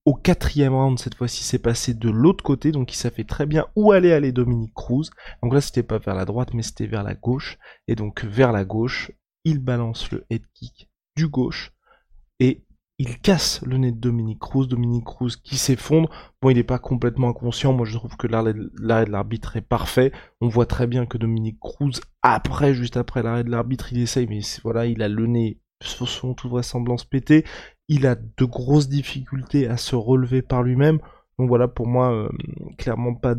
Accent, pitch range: French, 120-135 Hz